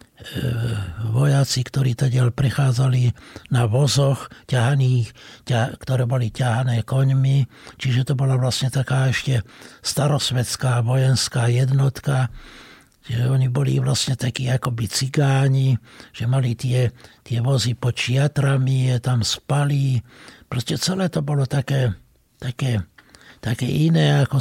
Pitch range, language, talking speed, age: 125-155 Hz, Slovak, 115 wpm, 60-79